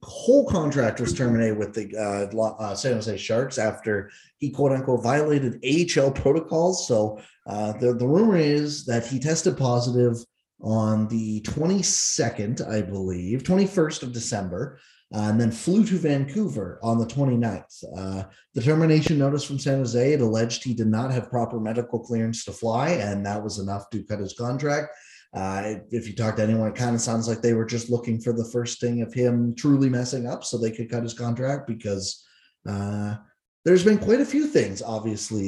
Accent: American